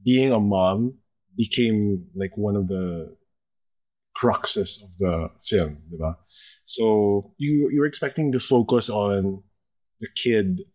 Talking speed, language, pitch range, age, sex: 125 wpm, English, 95-110 Hz, 20-39, male